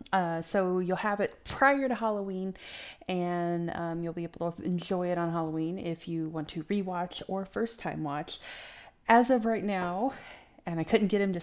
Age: 30-49